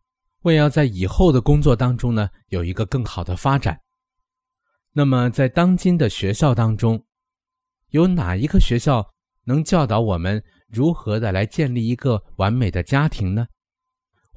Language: Chinese